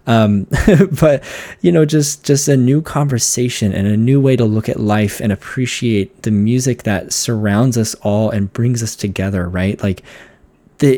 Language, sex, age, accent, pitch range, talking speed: English, male, 20-39, American, 105-135 Hz, 175 wpm